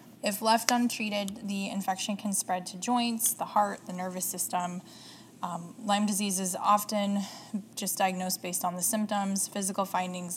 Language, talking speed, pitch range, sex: English, 155 wpm, 180-205 Hz, female